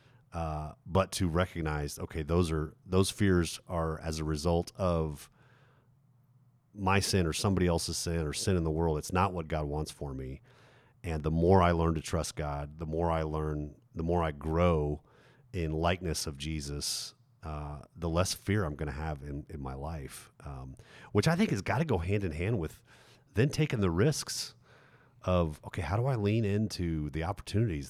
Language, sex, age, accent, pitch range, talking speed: English, male, 40-59, American, 80-120 Hz, 190 wpm